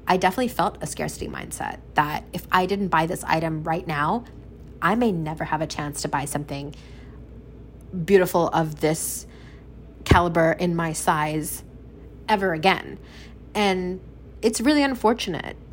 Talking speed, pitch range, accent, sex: 140 wpm, 155-195 Hz, American, female